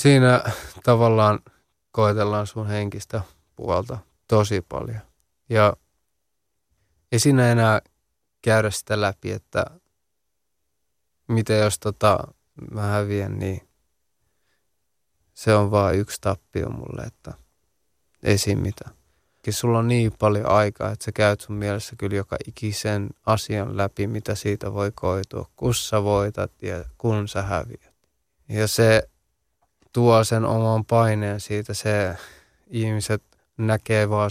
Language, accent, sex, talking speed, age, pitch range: Finnish, native, male, 120 wpm, 20-39, 100-115 Hz